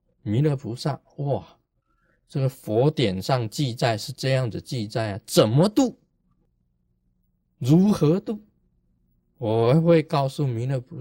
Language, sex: Chinese, male